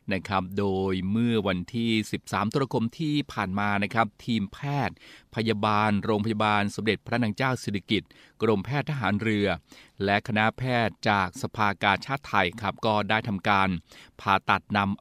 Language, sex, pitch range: Thai, male, 100-115 Hz